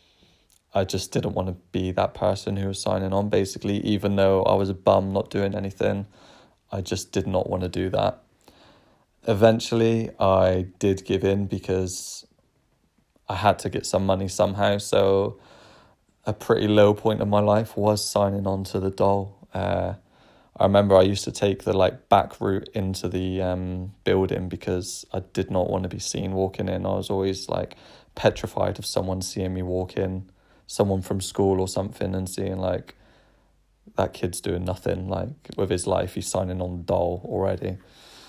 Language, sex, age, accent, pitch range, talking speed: English, male, 20-39, British, 95-105 Hz, 180 wpm